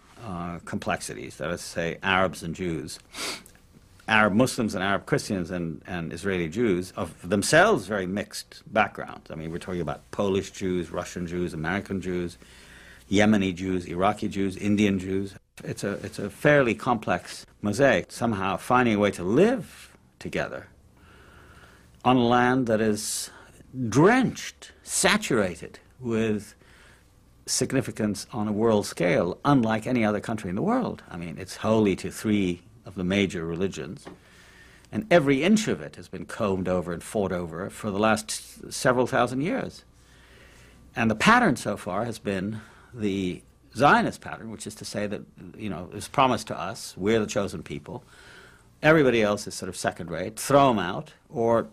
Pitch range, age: 90-115 Hz, 60-79